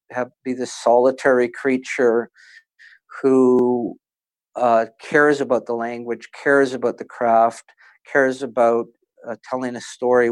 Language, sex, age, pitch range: English, male, 50-69, 115-130 Hz